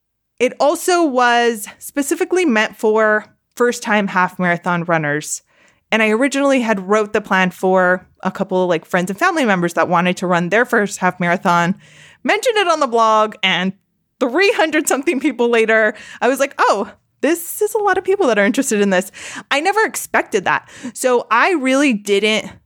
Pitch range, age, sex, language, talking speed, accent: 190-265 Hz, 20-39, female, English, 170 wpm, American